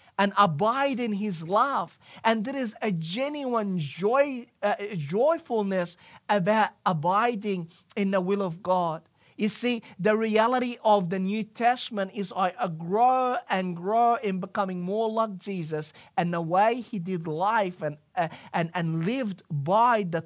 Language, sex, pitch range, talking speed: English, male, 185-230 Hz, 150 wpm